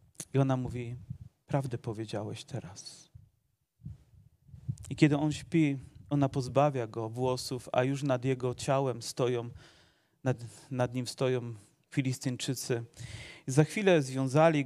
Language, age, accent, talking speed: Polish, 40-59, native, 115 wpm